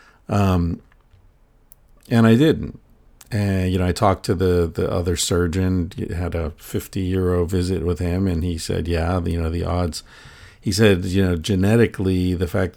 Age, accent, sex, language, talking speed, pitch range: 50-69, American, male, English, 170 wpm, 85-105 Hz